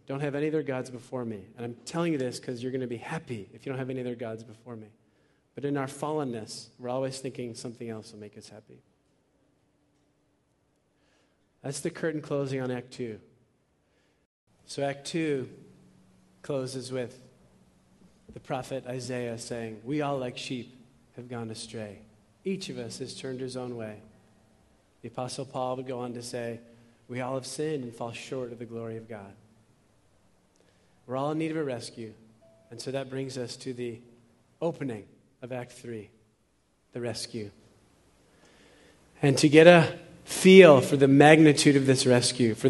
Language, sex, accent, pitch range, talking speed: English, male, American, 115-140 Hz, 175 wpm